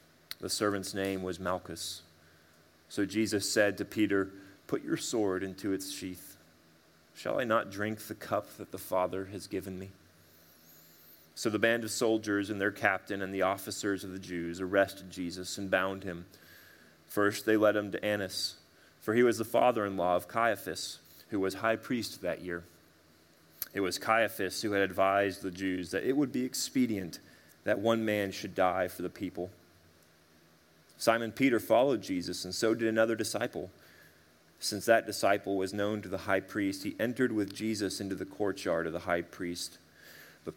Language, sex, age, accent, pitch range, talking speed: English, male, 30-49, American, 85-105 Hz, 175 wpm